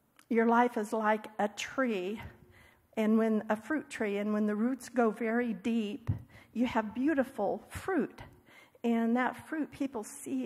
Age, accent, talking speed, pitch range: 50-69, American, 155 wpm, 215-245 Hz